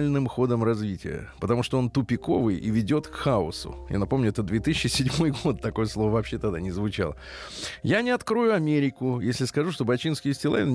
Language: Russian